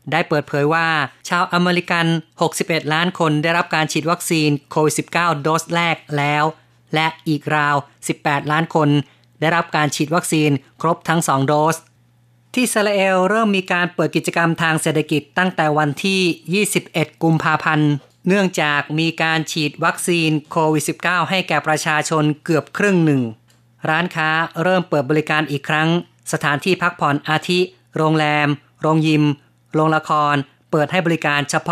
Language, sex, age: Thai, female, 30-49